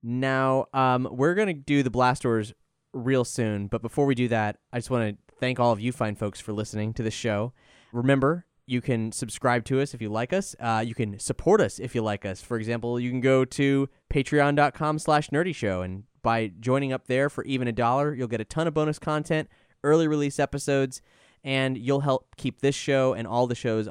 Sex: male